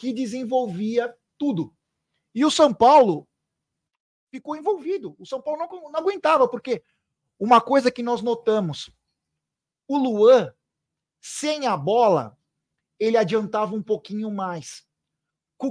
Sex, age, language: male, 40-59, Portuguese